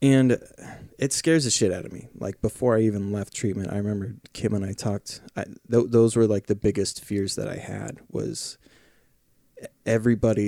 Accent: American